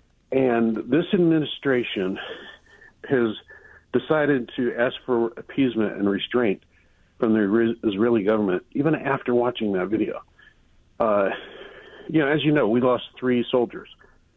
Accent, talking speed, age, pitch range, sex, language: American, 130 wpm, 50-69, 105-130 Hz, male, English